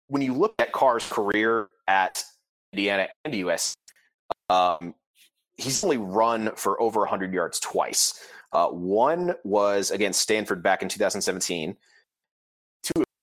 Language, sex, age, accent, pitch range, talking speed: English, male, 30-49, American, 90-125 Hz, 120 wpm